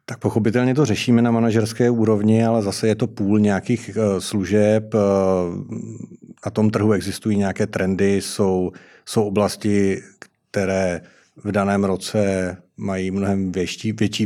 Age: 40-59